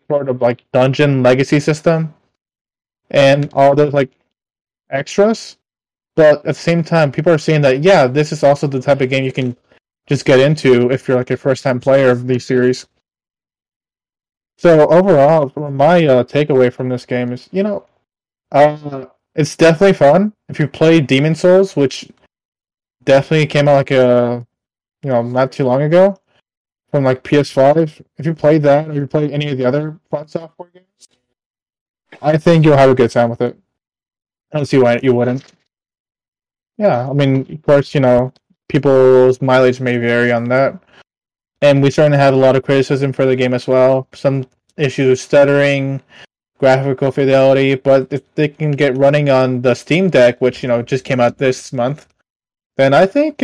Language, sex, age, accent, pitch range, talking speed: English, male, 20-39, American, 130-155 Hz, 180 wpm